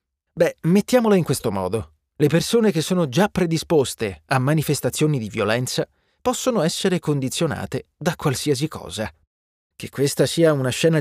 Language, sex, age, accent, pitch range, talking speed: Italian, male, 30-49, native, 115-190 Hz, 140 wpm